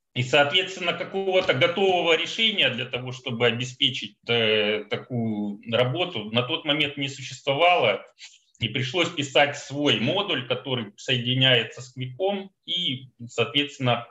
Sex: male